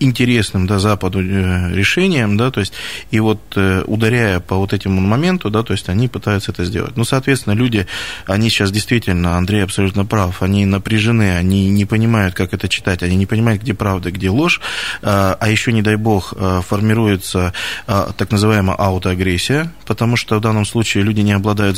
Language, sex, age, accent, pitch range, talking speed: Russian, male, 20-39, native, 95-115 Hz, 170 wpm